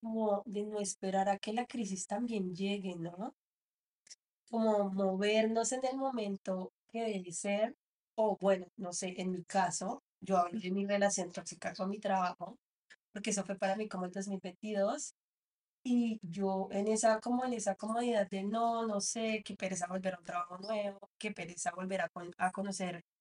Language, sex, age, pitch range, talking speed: Spanish, female, 20-39, 185-225 Hz, 175 wpm